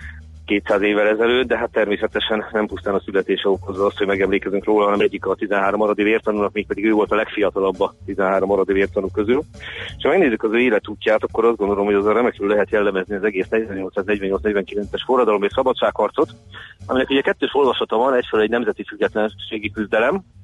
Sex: male